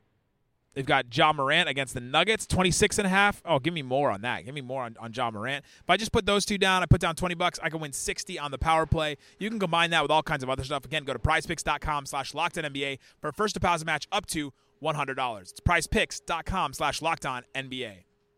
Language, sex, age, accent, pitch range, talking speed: English, male, 30-49, American, 135-180 Hz, 235 wpm